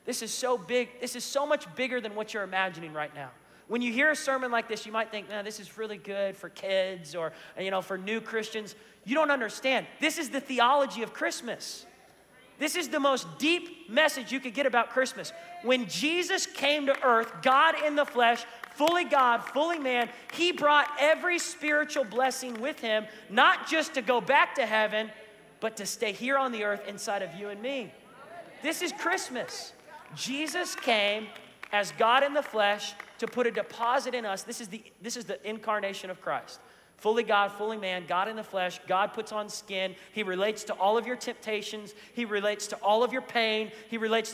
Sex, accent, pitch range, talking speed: male, American, 210-270 Hz, 200 wpm